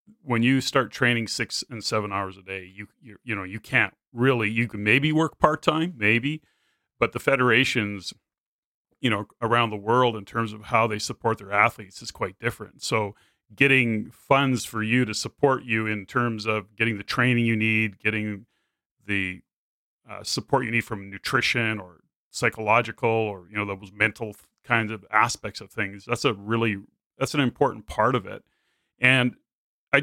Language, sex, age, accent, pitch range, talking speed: English, male, 30-49, American, 110-130 Hz, 180 wpm